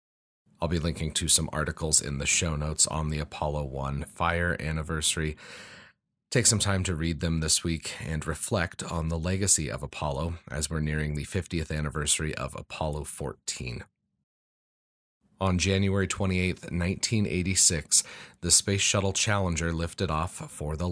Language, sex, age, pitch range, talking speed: English, male, 30-49, 75-95 Hz, 150 wpm